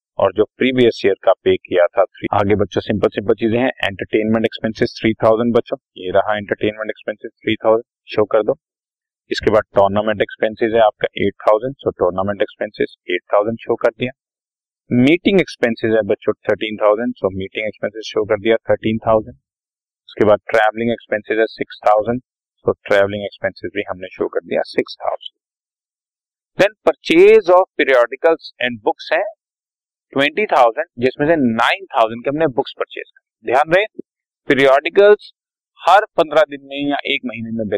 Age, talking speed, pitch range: 40-59, 90 wpm, 110-185 Hz